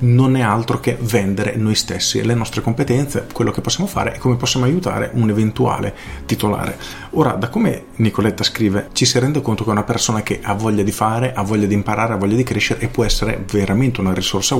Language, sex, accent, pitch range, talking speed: Italian, male, native, 100-120 Hz, 220 wpm